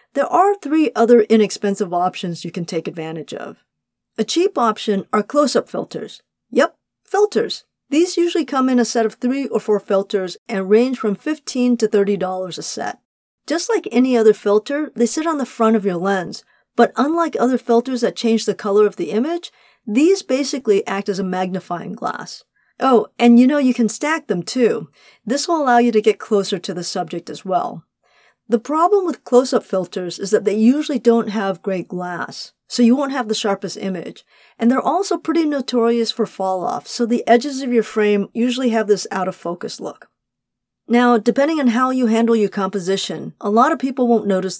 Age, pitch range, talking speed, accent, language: 40-59, 195-250 Hz, 195 wpm, American, English